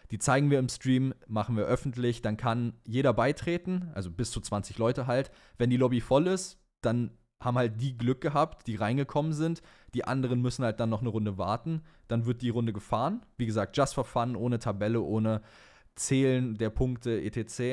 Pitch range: 110-130 Hz